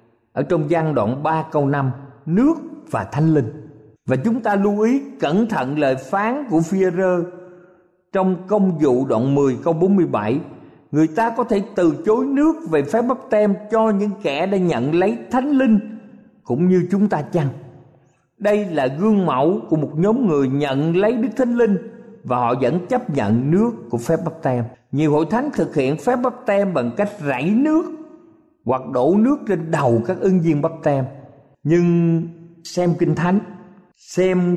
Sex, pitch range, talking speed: male, 140-205 Hz, 180 wpm